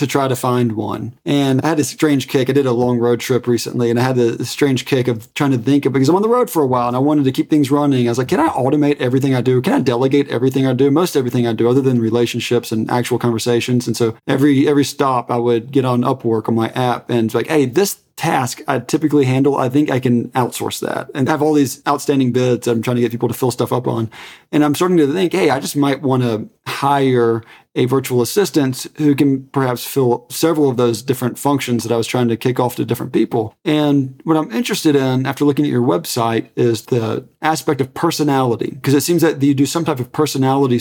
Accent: American